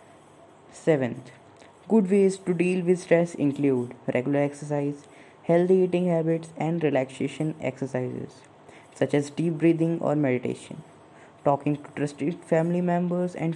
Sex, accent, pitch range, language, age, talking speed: female, Indian, 135-165 Hz, English, 20-39, 125 wpm